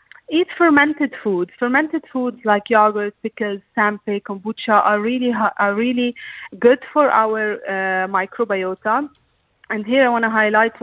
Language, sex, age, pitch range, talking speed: English, female, 30-49, 200-255 Hz, 145 wpm